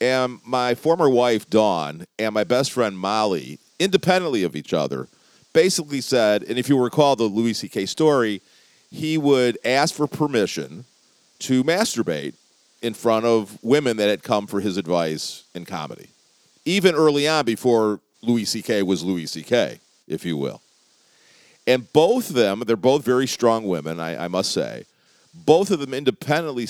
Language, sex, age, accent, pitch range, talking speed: English, male, 40-59, American, 105-155 Hz, 160 wpm